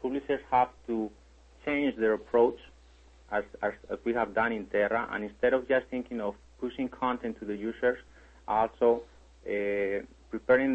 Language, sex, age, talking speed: English, male, 30-49, 155 wpm